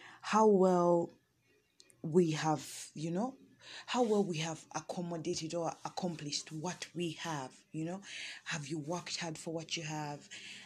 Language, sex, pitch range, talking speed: English, female, 155-180 Hz, 145 wpm